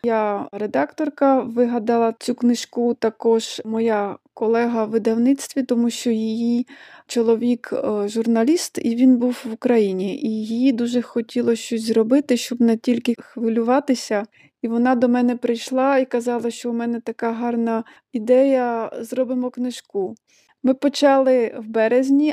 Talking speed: 130 wpm